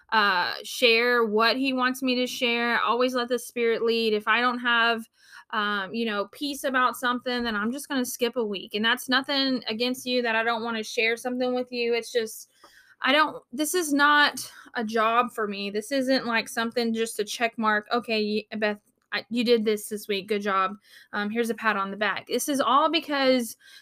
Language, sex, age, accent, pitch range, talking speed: English, female, 20-39, American, 215-265 Hz, 210 wpm